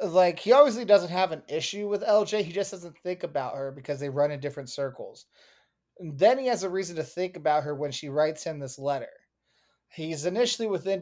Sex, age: male, 20-39